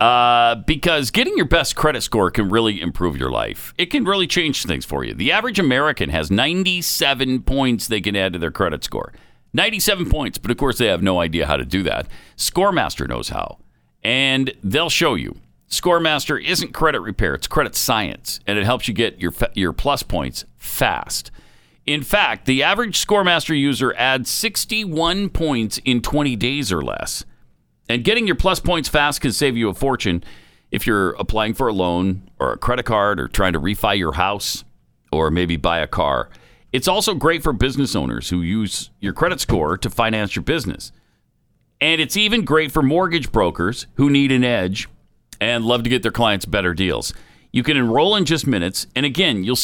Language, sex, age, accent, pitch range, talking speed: English, male, 50-69, American, 95-150 Hz, 190 wpm